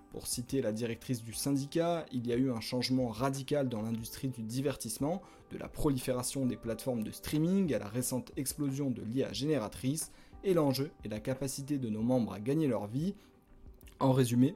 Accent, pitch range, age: French, 120-150 Hz, 20-39